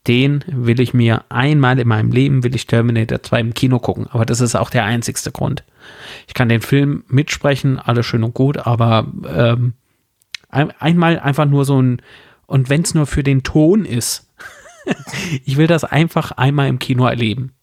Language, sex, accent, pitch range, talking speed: German, male, German, 115-140 Hz, 185 wpm